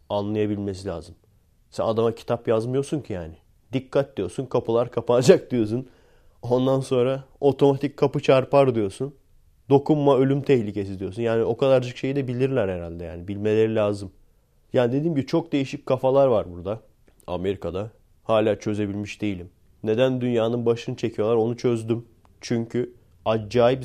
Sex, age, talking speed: male, 30-49, 135 wpm